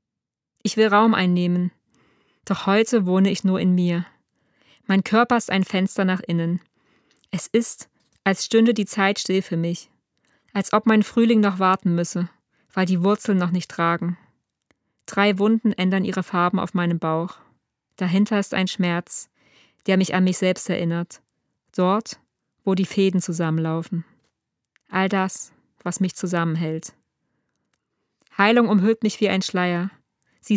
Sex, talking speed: female, 145 wpm